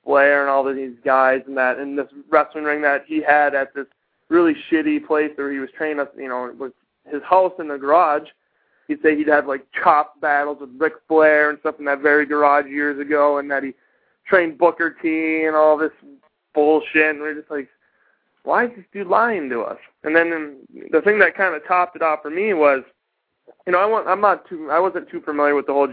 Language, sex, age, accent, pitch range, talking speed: English, male, 20-39, American, 140-170 Hz, 230 wpm